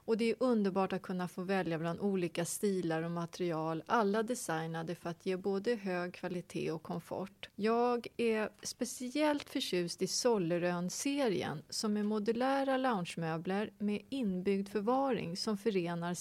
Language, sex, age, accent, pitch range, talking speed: English, female, 30-49, Swedish, 180-235 Hz, 140 wpm